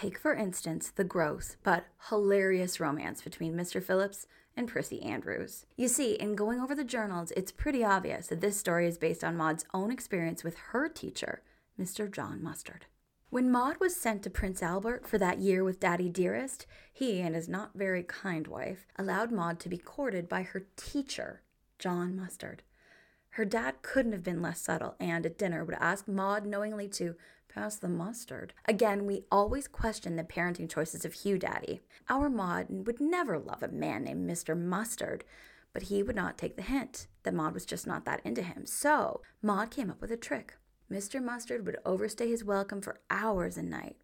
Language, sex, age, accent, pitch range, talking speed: English, female, 20-39, American, 180-235 Hz, 190 wpm